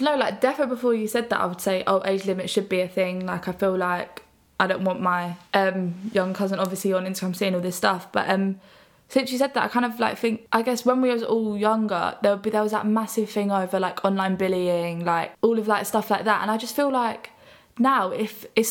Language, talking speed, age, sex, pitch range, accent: English, 260 wpm, 10-29, female, 185-215 Hz, British